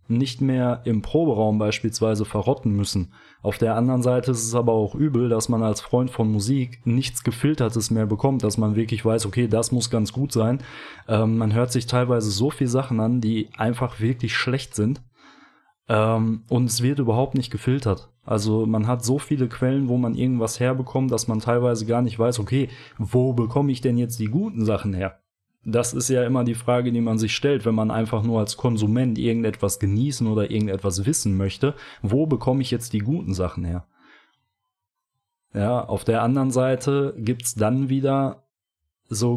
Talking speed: 185 wpm